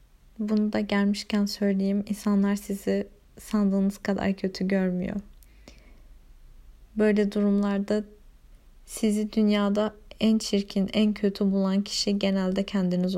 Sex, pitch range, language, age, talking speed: female, 195-215 Hz, Turkish, 30-49, 100 wpm